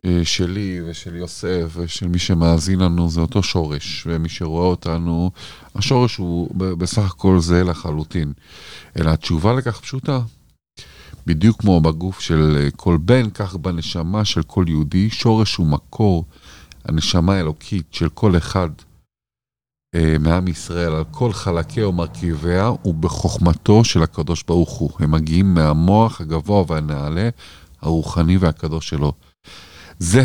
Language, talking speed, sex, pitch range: Hebrew, 125 wpm, male, 80-100 Hz